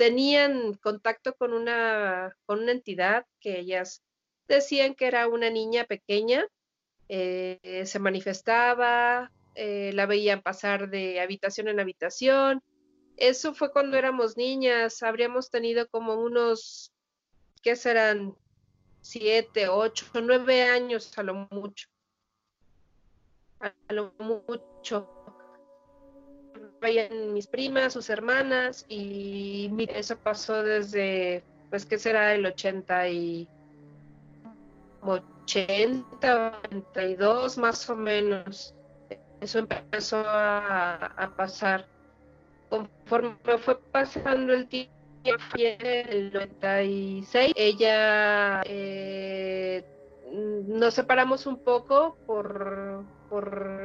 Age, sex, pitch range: 40-59, female, 195-240 Hz